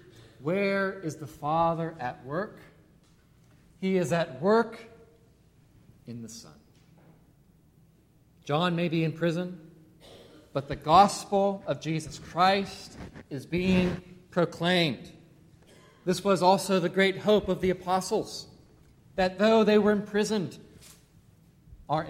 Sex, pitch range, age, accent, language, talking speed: male, 140-185 Hz, 40-59, American, English, 115 wpm